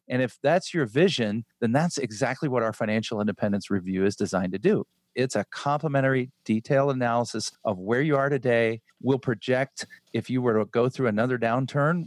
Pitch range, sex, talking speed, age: 110-145 Hz, male, 185 wpm, 40-59